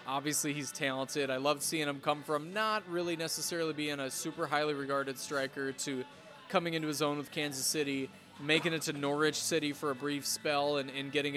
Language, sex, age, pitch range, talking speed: English, male, 20-39, 130-155 Hz, 200 wpm